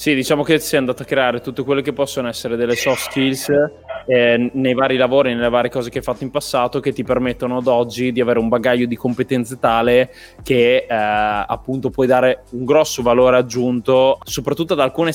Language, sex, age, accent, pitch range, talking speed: Italian, male, 20-39, native, 125-140 Hz, 200 wpm